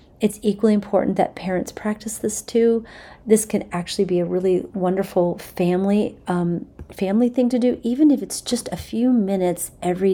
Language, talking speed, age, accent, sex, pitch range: English, 170 wpm, 40-59, American, female, 180-215 Hz